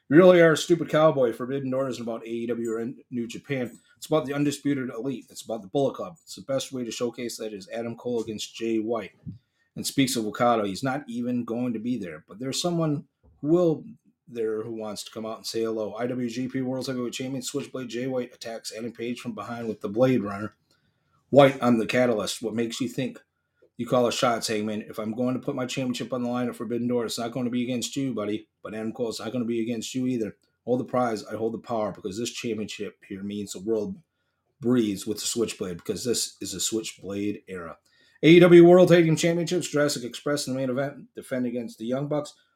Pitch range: 115-135 Hz